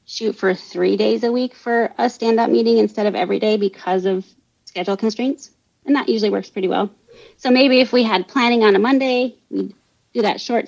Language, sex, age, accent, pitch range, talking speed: English, female, 30-49, American, 200-295 Hz, 210 wpm